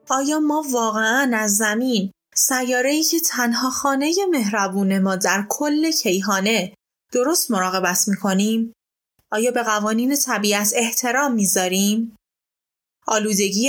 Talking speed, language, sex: 105 wpm, Persian, female